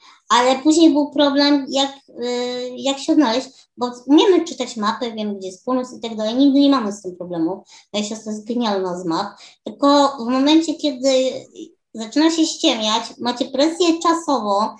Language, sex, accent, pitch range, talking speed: Polish, male, native, 235-300 Hz, 165 wpm